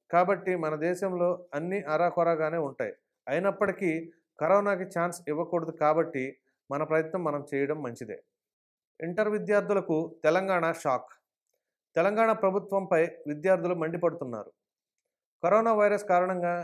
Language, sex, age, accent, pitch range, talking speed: English, male, 30-49, Indian, 155-195 Hz, 125 wpm